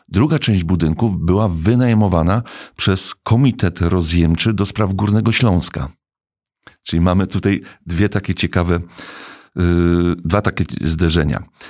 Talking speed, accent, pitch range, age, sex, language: 115 wpm, native, 85-105 Hz, 50-69, male, Polish